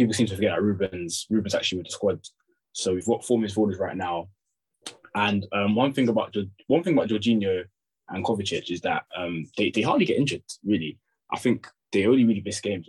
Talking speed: 215 wpm